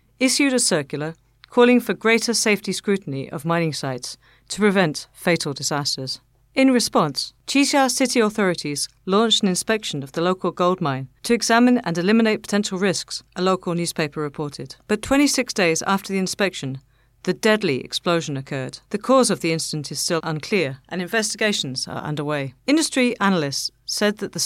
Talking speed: 160 wpm